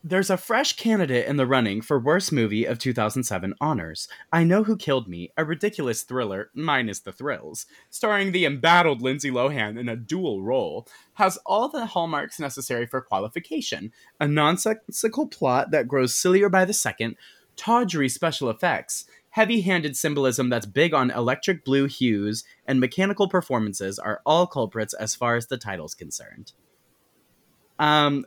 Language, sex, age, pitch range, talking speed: English, male, 20-39, 115-165 Hz, 155 wpm